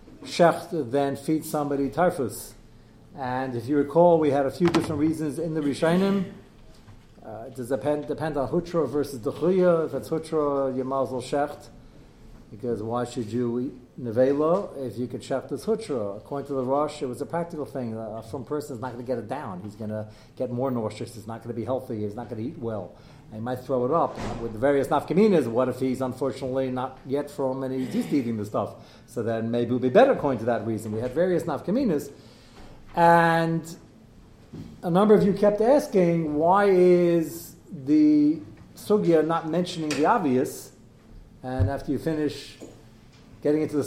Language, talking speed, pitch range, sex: English, 195 wpm, 120-160 Hz, male